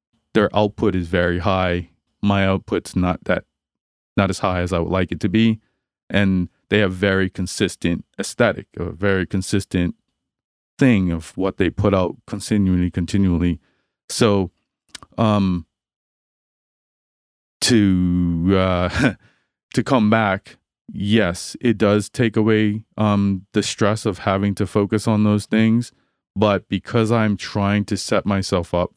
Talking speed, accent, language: 135 wpm, American, English